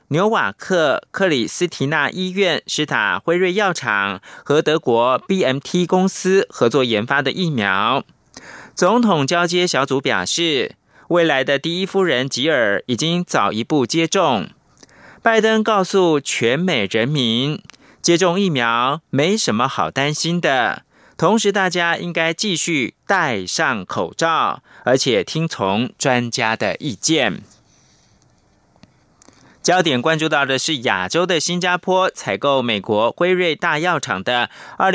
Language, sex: German, male